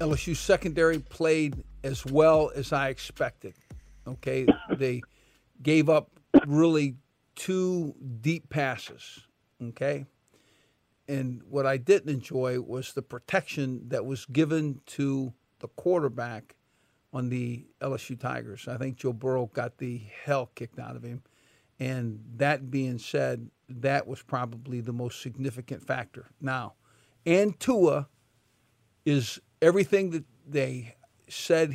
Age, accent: 50-69, American